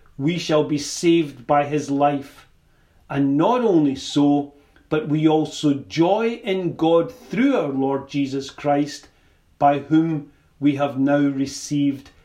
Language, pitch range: English, 140-195 Hz